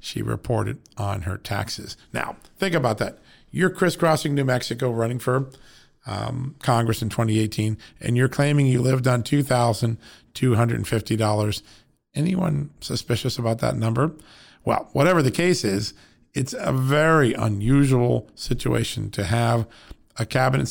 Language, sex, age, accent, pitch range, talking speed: English, male, 40-59, American, 110-135 Hz, 130 wpm